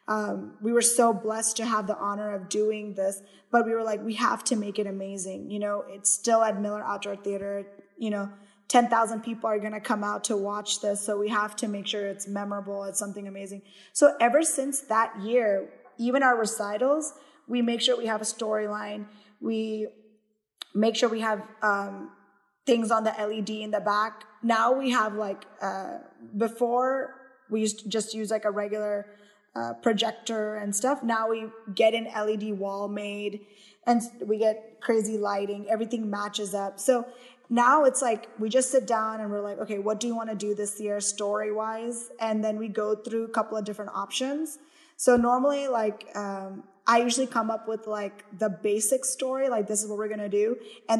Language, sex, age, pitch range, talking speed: English, female, 10-29, 205-230 Hz, 195 wpm